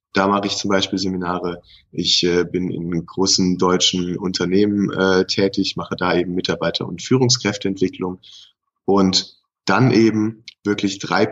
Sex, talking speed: male, 125 wpm